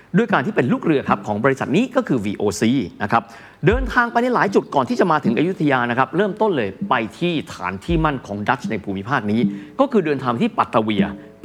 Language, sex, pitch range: Thai, male, 110-160 Hz